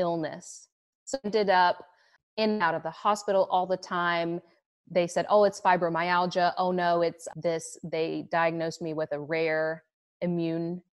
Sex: female